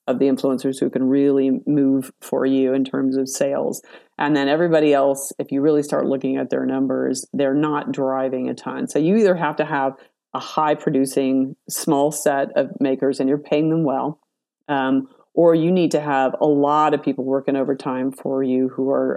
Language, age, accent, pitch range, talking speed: English, 40-59, American, 135-150 Hz, 200 wpm